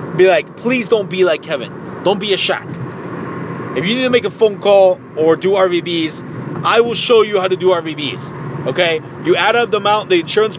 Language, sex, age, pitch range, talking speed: English, male, 30-49, 150-185 Hz, 215 wpm